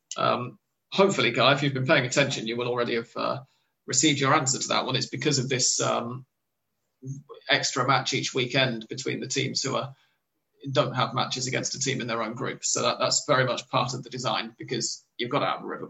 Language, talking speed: English, 225 wpm